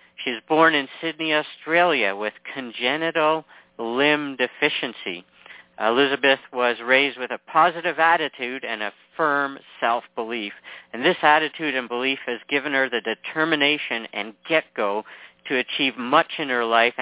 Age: 50-69